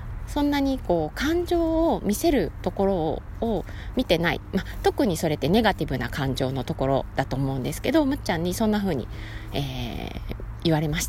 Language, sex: Japanese, female